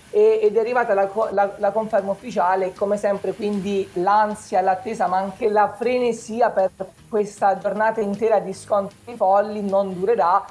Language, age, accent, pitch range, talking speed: Italian, 20-39, native, 180-220 Hz, 145 wpm